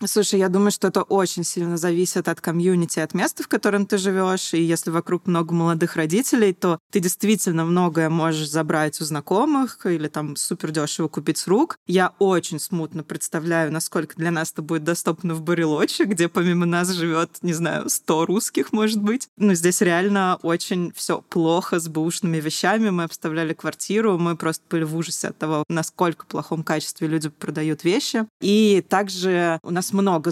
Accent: native